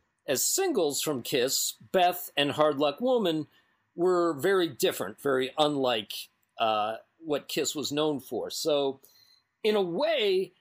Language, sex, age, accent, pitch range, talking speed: English, male, 40-59, American, 125-170 Hz, 135 wpm